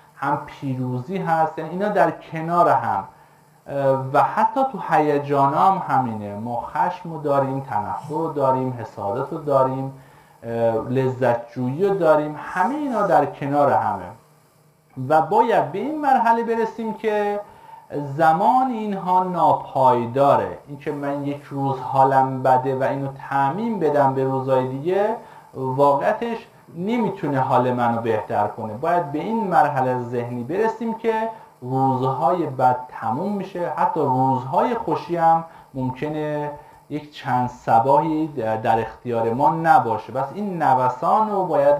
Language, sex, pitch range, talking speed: Persian, male, 130-175 Hz, 120 wpm